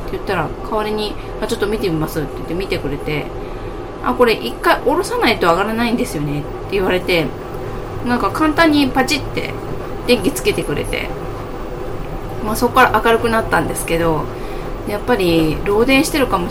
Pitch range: 155-235 Hz